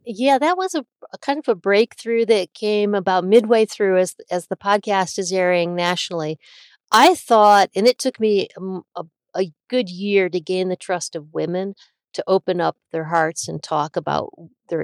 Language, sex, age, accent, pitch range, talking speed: English, female, 40-59, American, 160-190 Hz, 185 wpm